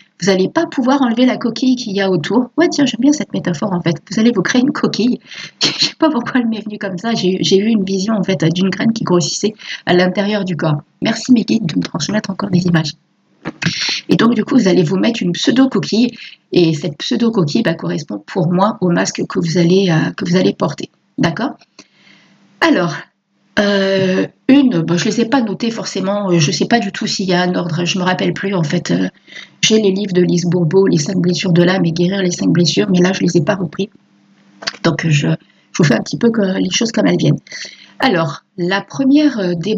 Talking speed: 235 wpm